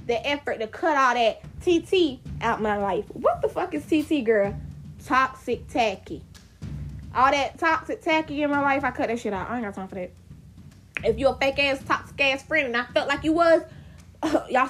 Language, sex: English, female